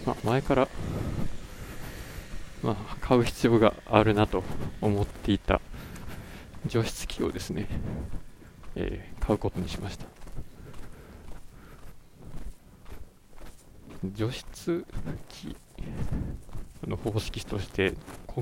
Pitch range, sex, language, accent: 95-120 Hz, male, Japanese, native